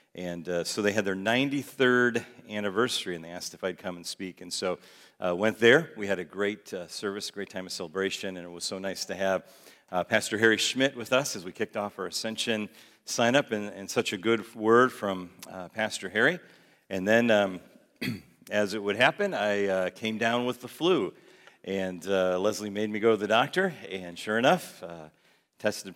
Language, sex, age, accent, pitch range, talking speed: English, male, 40-59, American, 90-115 Hz, 205 wpm